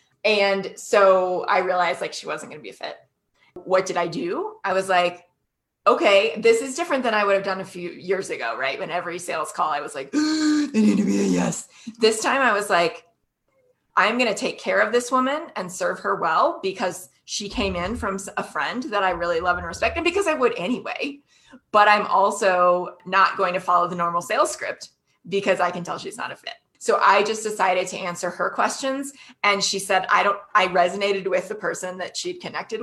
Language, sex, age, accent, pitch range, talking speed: English, female, 20-39, American, 180-215 Hz, 220 wpm